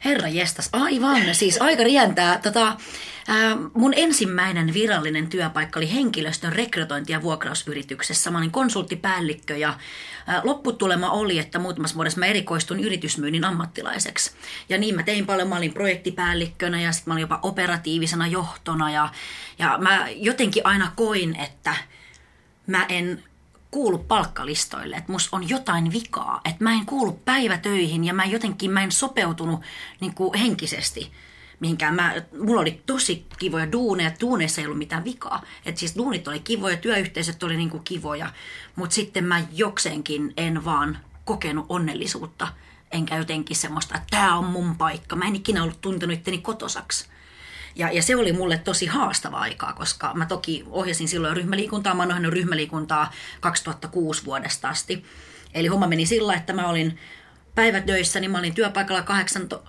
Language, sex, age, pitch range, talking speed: Finnish, female, 30-49, 165-205 Hz, 155 wpm